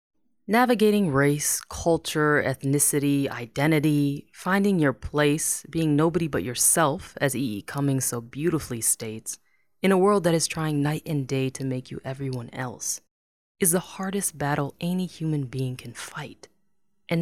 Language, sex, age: English, female, 20-39